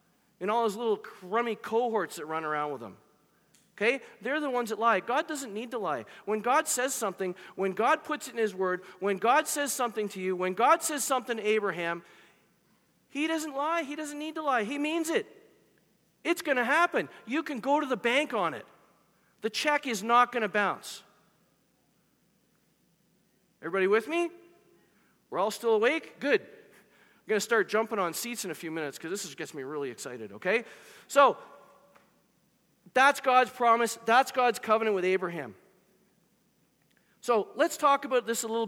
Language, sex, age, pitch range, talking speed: English, male, 40-59, 195-265 Hz, 180 wpm